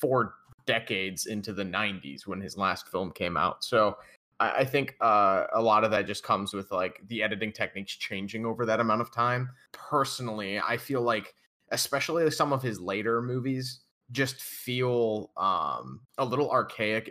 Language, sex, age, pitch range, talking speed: English, male, 20-39, 100-125 Hz, 170 wpm